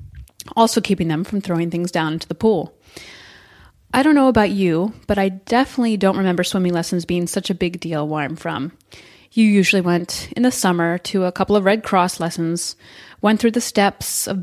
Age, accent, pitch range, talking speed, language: 30-49, American, 180-215 Hz, 200 wpm, English